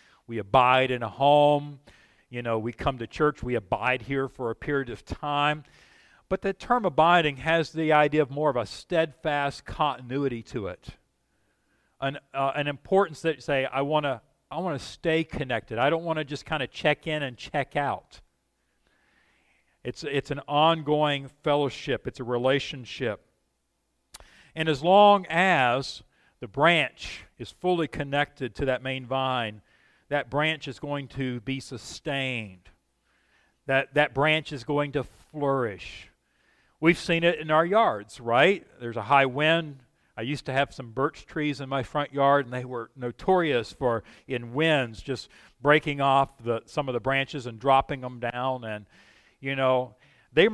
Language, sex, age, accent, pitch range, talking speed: English, male, 50-69, American, 125-155 Hz, 165 wpm